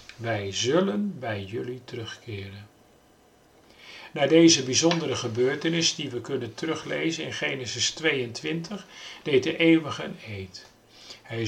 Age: 50-69